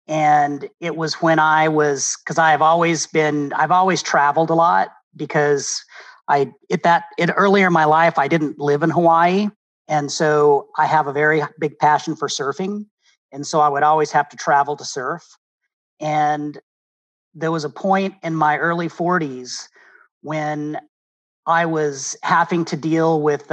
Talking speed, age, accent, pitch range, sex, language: 165 wpm, 40-59, American, 145-170 Hz, male, English